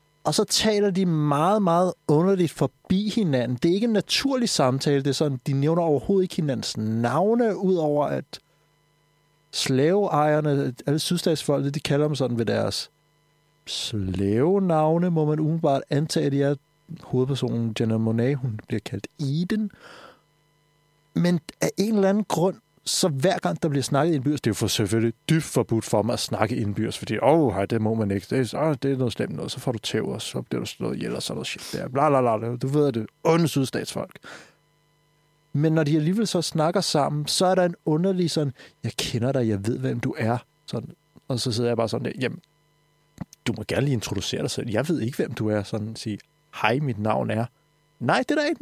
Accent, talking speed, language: native, 200 wpm, Danish